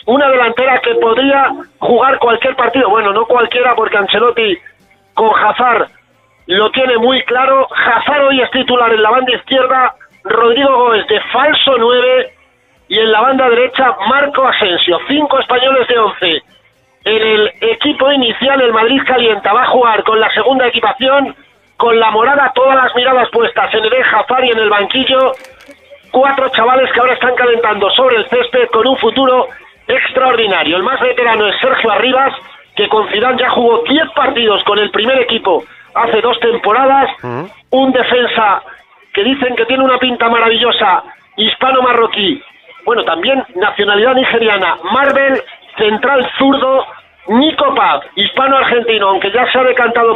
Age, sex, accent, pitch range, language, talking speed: 40-59, male, Spanish, 225-265 Hz, Spanish, 155 wpm